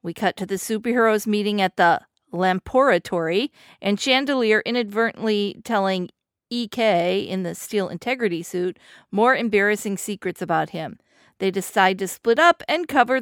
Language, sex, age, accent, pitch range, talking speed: English, female, 40-59, American, 185-235 Hz, 140 wpm